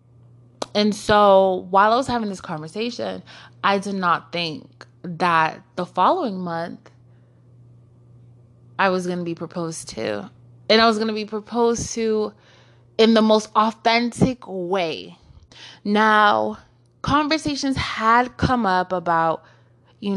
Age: 20-39